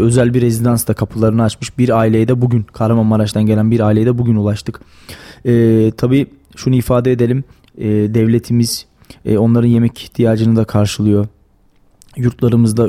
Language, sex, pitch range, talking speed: Turkish, male, 110-120 Hz, 130 wpm